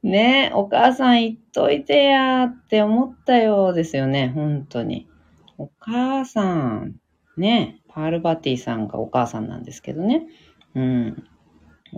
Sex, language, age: female, Japanese, 40-59